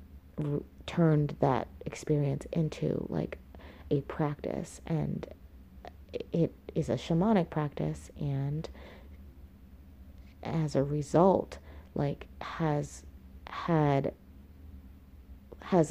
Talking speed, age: 80 wpm, 30-49